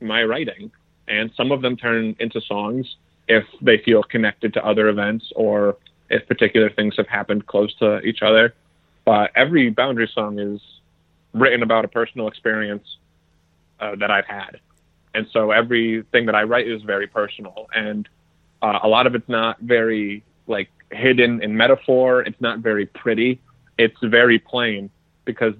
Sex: male